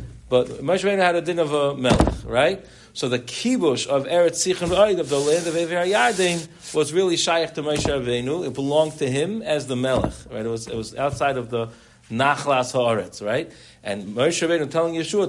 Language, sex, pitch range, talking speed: English, male, 120-175 Hz, 190 wpm